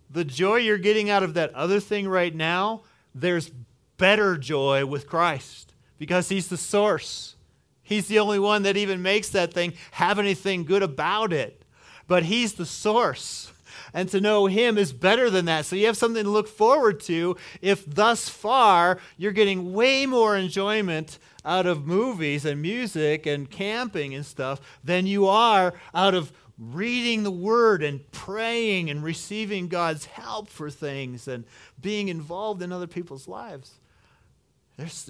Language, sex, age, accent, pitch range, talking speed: English, male, 40-59, American, 140-205 Hz, 160 wpm